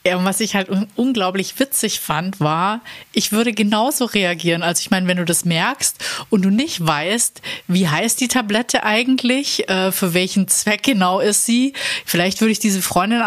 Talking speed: 175 wpm